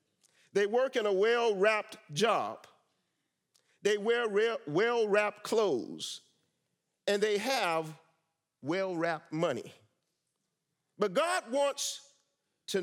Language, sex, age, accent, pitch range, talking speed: English, male, 50-69, American, 190-255 Hz, 95 wpm